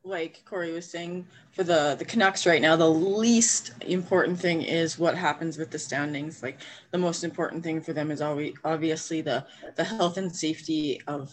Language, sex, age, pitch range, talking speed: English, female, 30-49, 155-185 Hz, 190 wpm